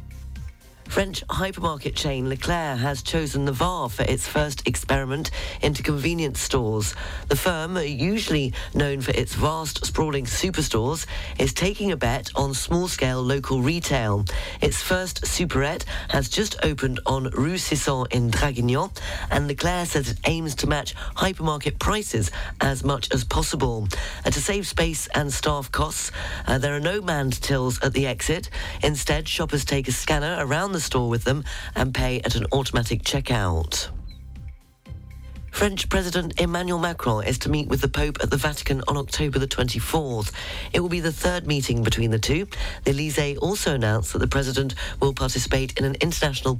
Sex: female